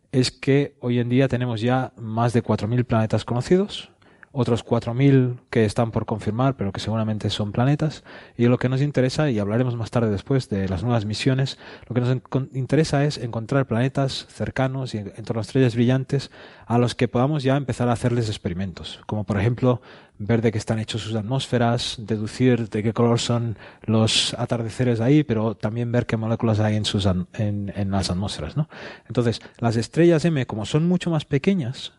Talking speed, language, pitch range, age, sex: 190 wpm, Spanish, 110-135 Hz, 30-49, male